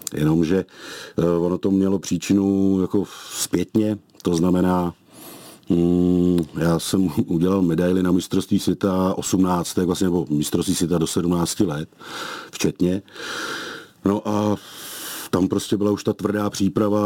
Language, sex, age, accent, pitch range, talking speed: Czech, male, 40-59, native, 90-105 Hz, 120 wpm